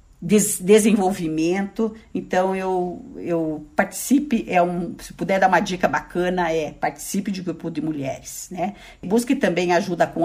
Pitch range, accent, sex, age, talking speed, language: 165-220 Hz, Brazilian, female, 50-69, 145 wpm, Portuguese